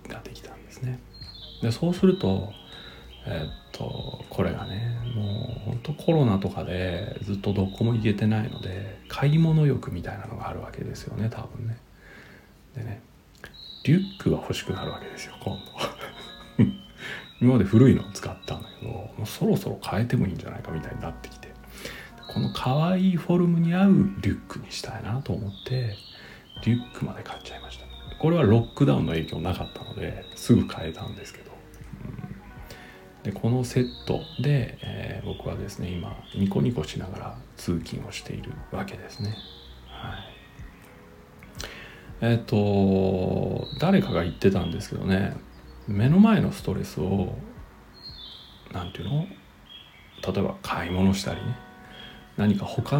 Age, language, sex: 40-59, Japanese, male